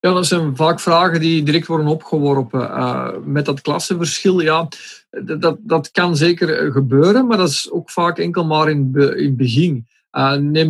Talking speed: 180 wpm